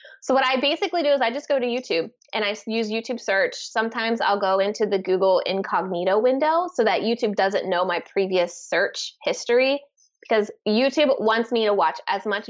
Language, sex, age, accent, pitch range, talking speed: English, female, 20-39, American, 185-235 Hz, 195 wpm